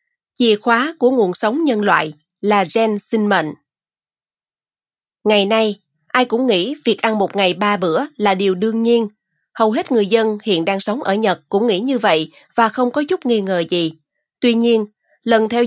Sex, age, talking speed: female, 30-49, 190 wpm